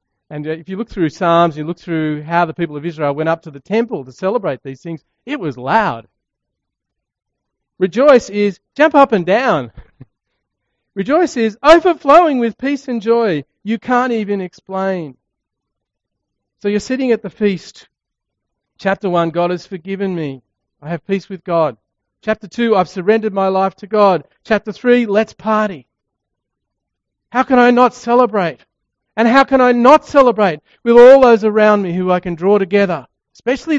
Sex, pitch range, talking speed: male, 150-225 Hz, 165 wpm